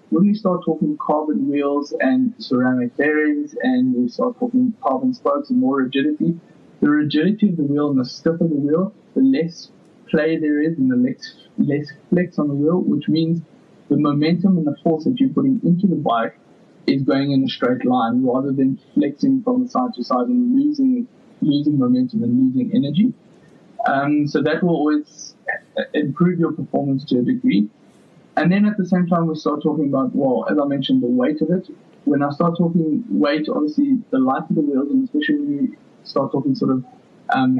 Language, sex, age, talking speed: English, male, 20-39, 195 wpm